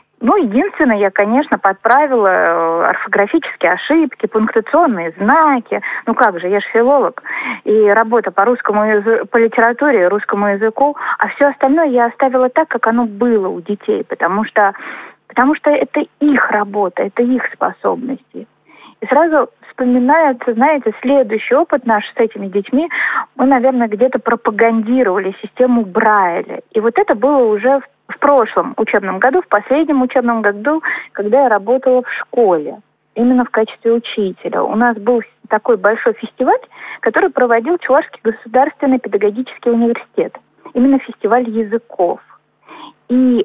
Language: Russian